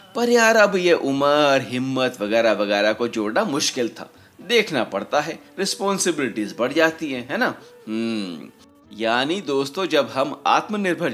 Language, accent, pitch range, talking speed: Hindi, native, 115-170 Hz, 140 wpm